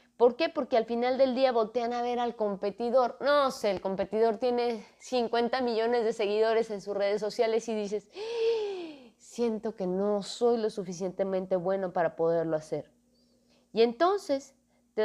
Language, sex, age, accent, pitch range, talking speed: Spanish, female, 20-39, Mexican, 200-245 Hz, 165 wpm